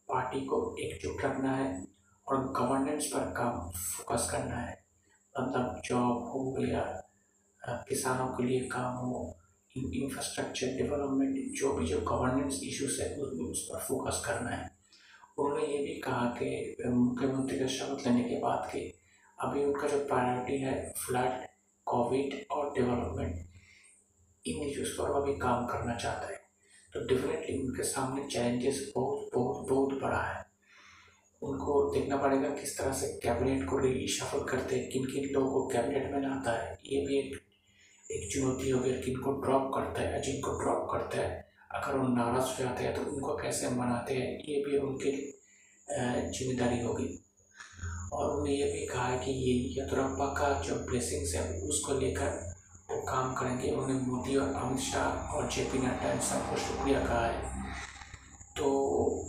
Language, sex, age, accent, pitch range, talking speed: Hindi, male, 50-69, native, 120-140 Hz, 150 wpm